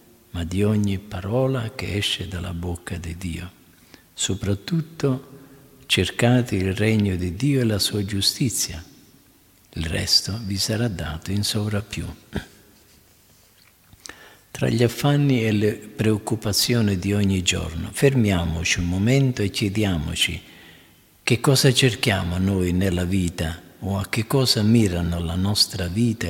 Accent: native